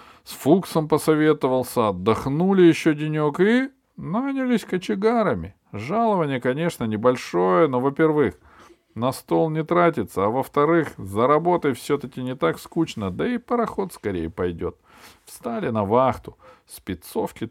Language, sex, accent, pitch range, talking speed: Russian, male, native, 110-165 Hz, 115 wpm